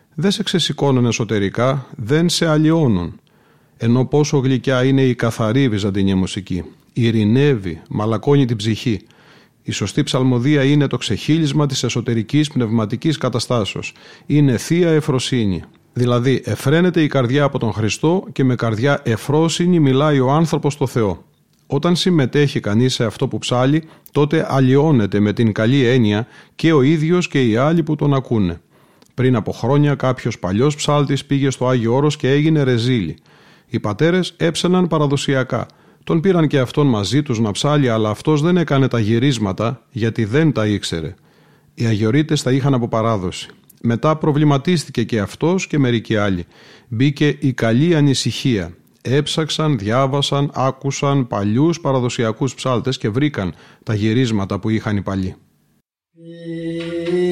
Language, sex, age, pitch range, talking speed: Greek, male, 40-59, 115-150 Hz, 140 wpm